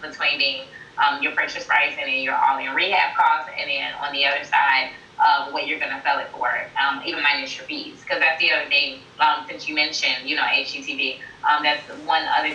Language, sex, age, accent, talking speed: English, female, 20-39, American, 225 wpm